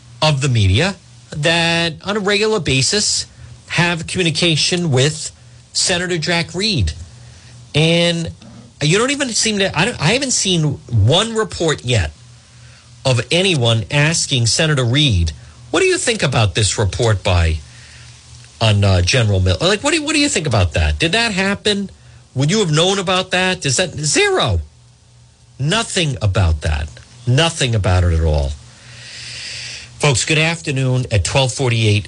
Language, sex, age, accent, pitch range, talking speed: English, male, 50-69, American, 105-155 Hz, 150 wpm